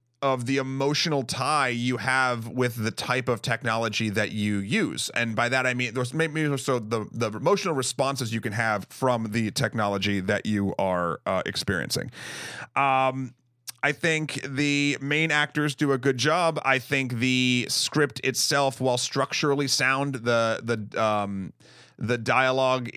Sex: male